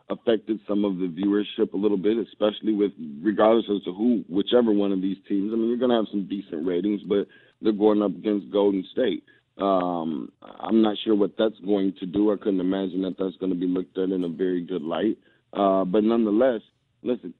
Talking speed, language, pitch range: 215 wpm, English, 95-120 Hz